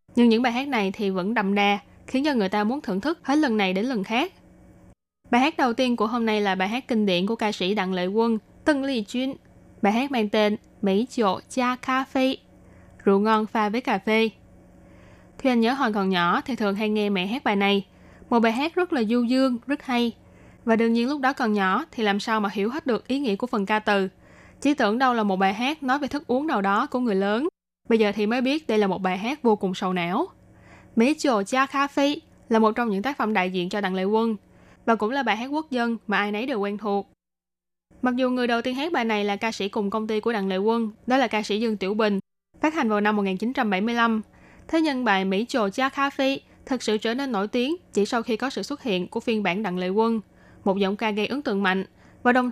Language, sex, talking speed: Vietnamese, female, 255 wpm